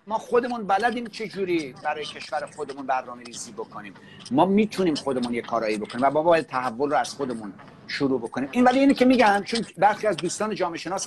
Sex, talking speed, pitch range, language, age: male, 185 wpm, 150-210 Hz, Persian, 50-69